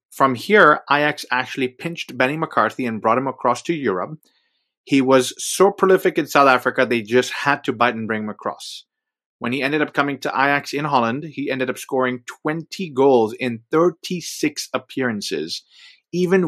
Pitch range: 120-150 Hz